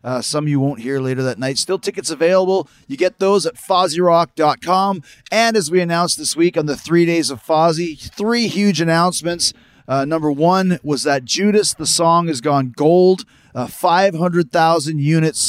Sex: male